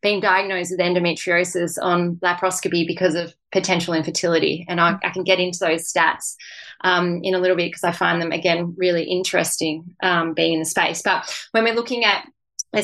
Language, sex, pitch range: English, female, 165-185 Hz